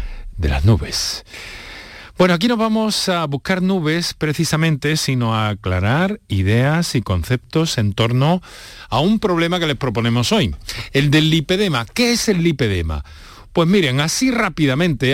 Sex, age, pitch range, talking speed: male, 50-69, 105-160 Hz, 145 wpm